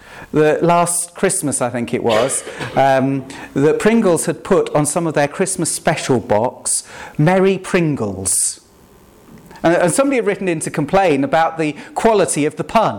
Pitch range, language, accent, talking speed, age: 160-230 Hz, English, British, 160 wpm, 40-59